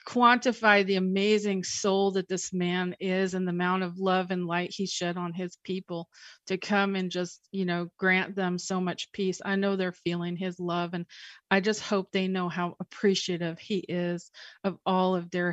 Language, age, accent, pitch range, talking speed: English, 40-59, American, 185-220 Hz, 195 wpm